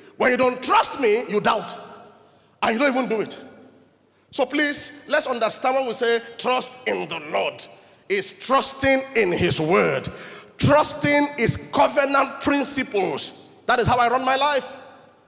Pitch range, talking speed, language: 210-290 Hz, 155 wpm, English